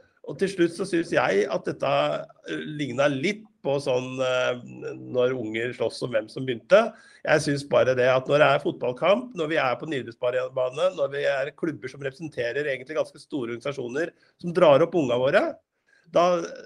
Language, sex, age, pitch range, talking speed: English, male, 50-69, 135-185 Hz, 185 wpm